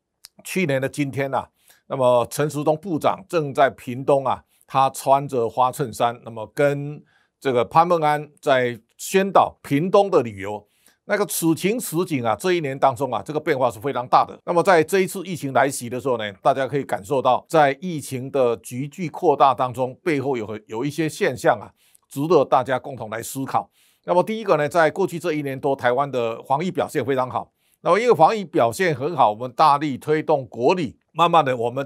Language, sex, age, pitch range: Chinese, male, 50-69, 130-170 Hz